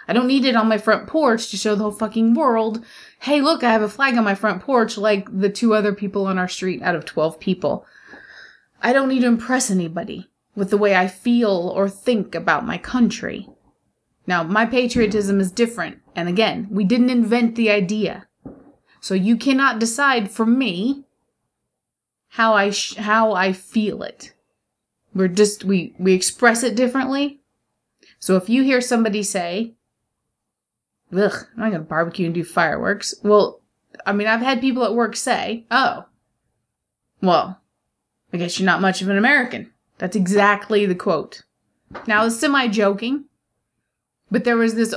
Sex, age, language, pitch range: female, 20-39, English, 195-240 Hz